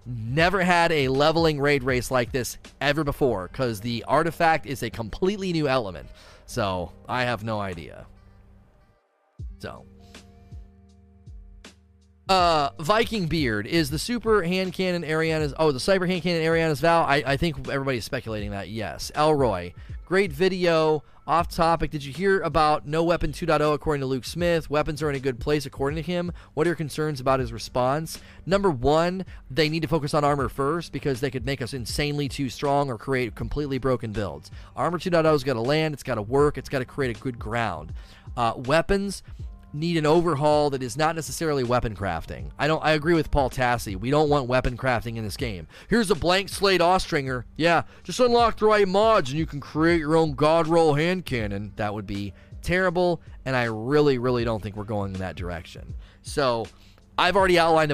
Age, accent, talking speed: 30-49, American, 190 wpm